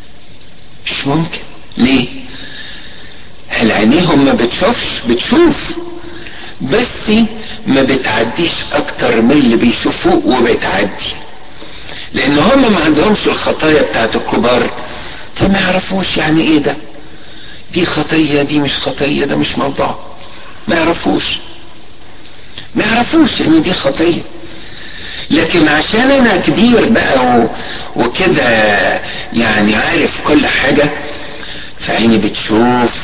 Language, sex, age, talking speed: Arabic, male, 60-79, 100 wpm